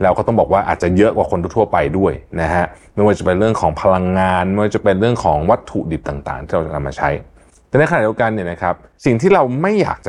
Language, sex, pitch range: Thai, male, 85-115 Hz